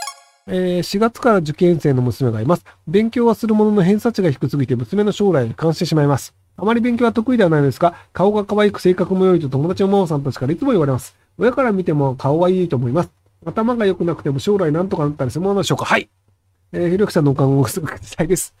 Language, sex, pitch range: Japanese, male, 135-205 Hz